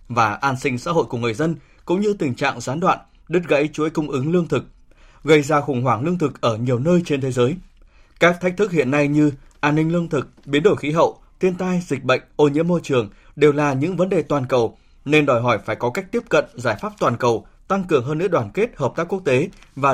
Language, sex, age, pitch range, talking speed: Vietnamese, male, 20-39, 125-170 Hz, 255 wpm